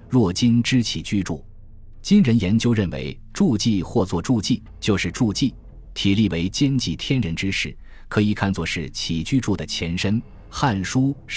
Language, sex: Chinese, male